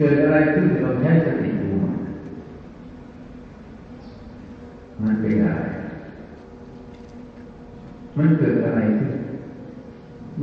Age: 60-79